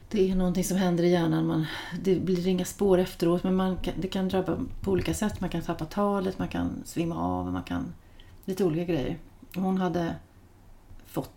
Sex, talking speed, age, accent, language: female, 205 wpm, 30-49, native, Swedish